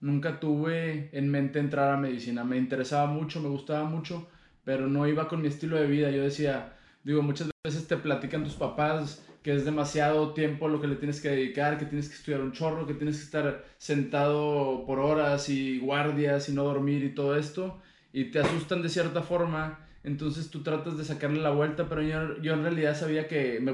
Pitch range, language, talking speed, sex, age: 140-160 Hz, Spanish, 205 wpm, male, 20-39